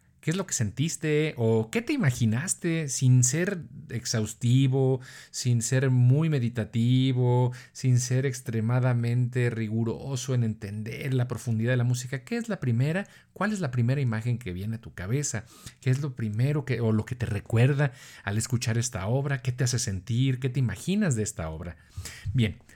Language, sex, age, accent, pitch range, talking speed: Spanish, male, 50-69, Mexican, 110-140 Hz, 170 wpm